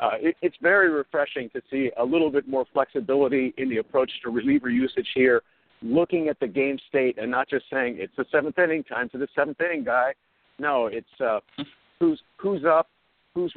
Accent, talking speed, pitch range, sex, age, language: American, 200 wpm, 130-160 Hz, male, 50-69, English